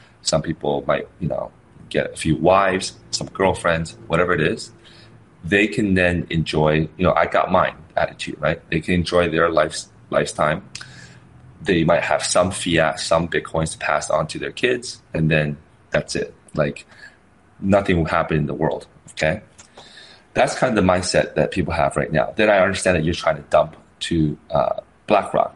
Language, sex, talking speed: English, male, 180 wpm